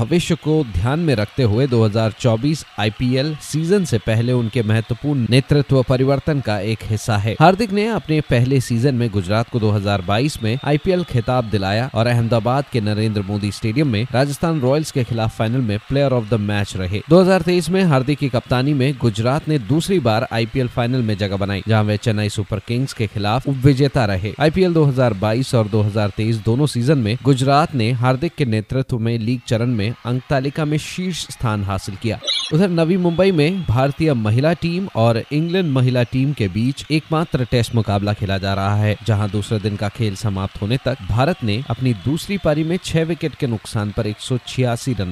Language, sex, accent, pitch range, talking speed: Hindi, male, native, 110-145 Hz, 185 wpm